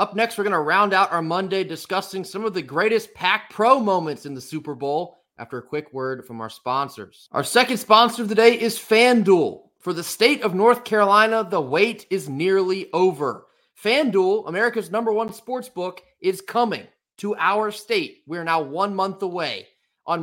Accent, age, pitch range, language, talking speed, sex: American, 30-49, 160-220 Hz, English, 190 wpm, male